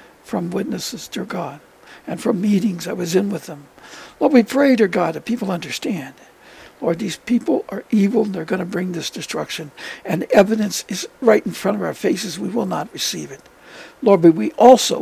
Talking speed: 200 wpm